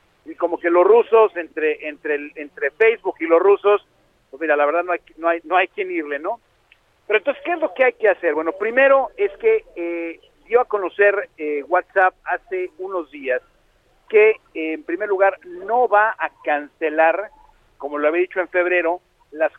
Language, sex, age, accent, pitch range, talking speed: Spanish, male, 50-69, Mexican, 160-215 Hz, 195 wpm